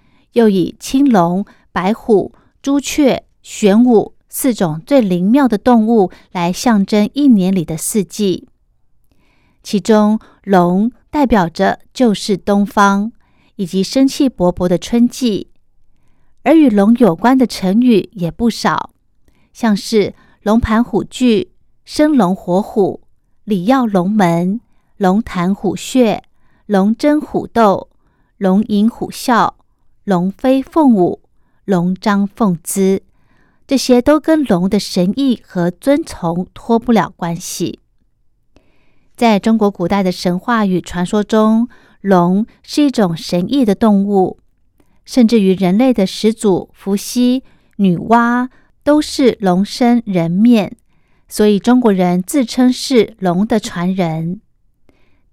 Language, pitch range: Chinese, 185-240 Hz